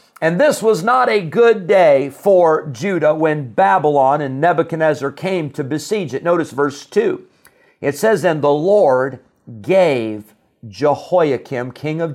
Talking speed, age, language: 145 wpm, 50-69, English